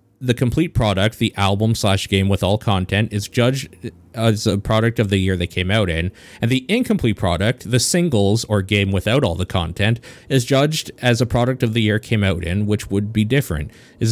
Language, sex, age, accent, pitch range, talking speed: English, male, 30-49, American, 105-125 Hz, 215 wpm